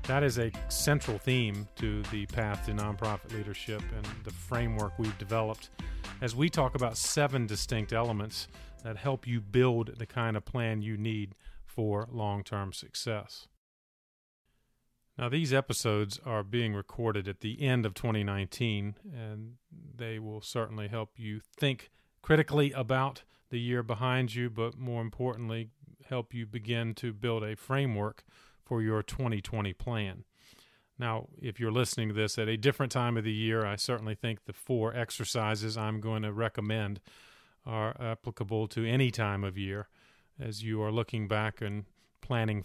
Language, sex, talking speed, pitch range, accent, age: English, male, 160 wpm, 105-120 Hz, American, 40-59